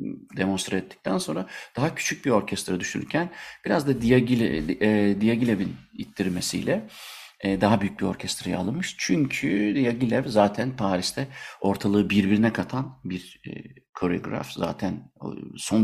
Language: Turkish